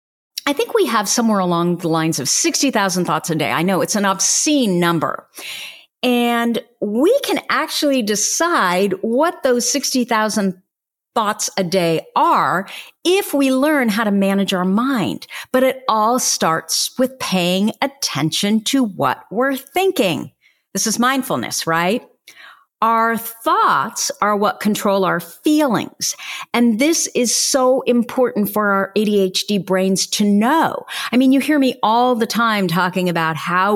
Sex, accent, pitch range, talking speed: female, American, 180-260 Hz, 150 wpm